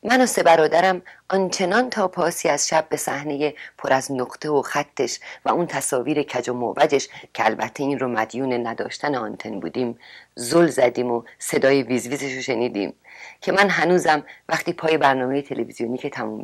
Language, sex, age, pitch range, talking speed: Persian, female, 40-59, 130-170 Hz, 170 wpm